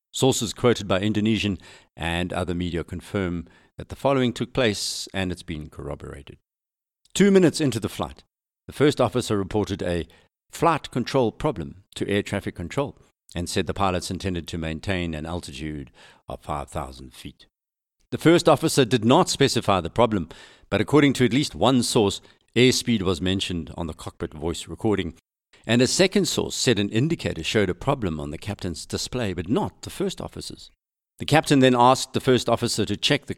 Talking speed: 175 wpm